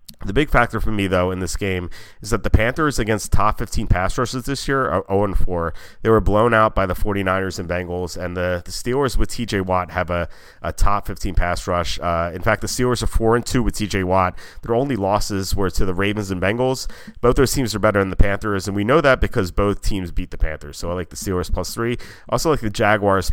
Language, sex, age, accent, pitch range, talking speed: English, male, 30-49, American, 95-110 Hz, 245 wpm